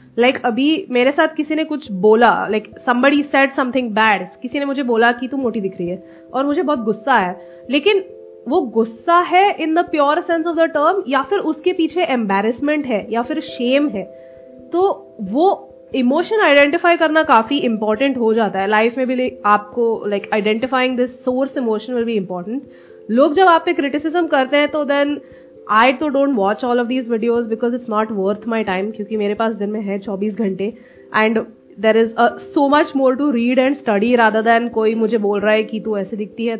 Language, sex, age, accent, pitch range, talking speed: Hindi, female, 20-39, native, 210-275 Hz, 205 wpm